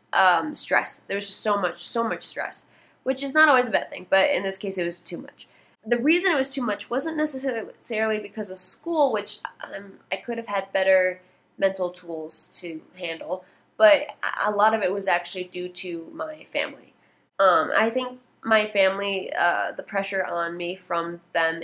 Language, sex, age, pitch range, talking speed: English, female, 10-29, 175-215 Hz, 195 wpm